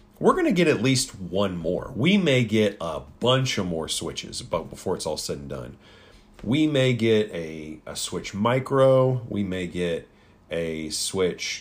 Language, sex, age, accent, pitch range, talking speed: English, male, 40-59, American, 90-115 Hz, 180 wpm